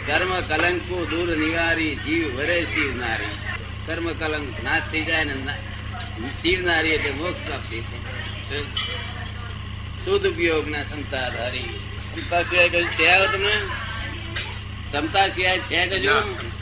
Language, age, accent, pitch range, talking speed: Gujarati, 30-49, native, 100-120 Hz, 55 wpm